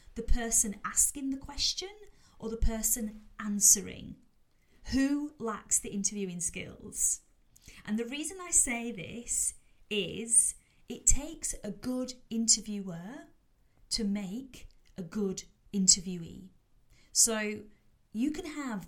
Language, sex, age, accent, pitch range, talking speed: English, female, 30-49, British, 185-245 Hz, 110 wpm